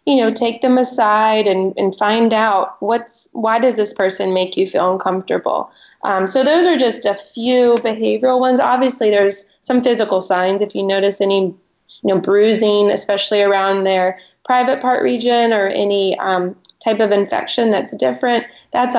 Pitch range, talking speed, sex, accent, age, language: 195-235 Hz, 170 wpm, female, American, 20-39, English